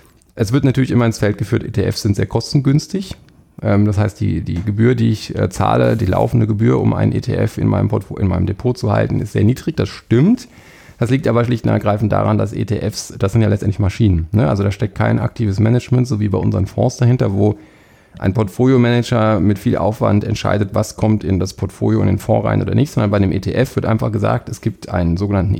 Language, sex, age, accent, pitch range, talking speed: German, male, 40-59, German, 105-120 Hz, 220 wpm